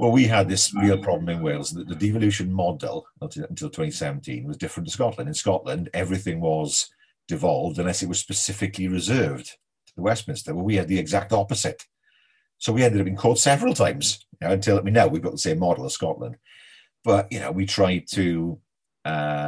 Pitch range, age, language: 95-115 Hz, 50-69, English